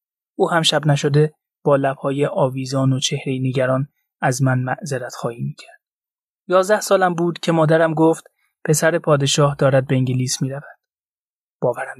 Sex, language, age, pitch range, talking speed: male, Persian, 20-39, 135-170 Hz, 140 wpm